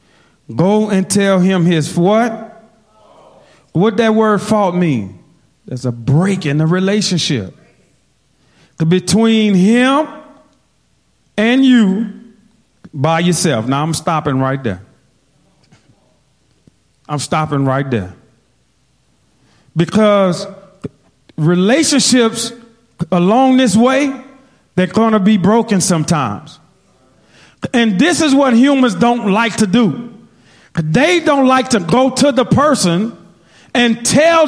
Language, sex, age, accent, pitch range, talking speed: English, male, 40-59, American, 180-265 Hz, 110 wpm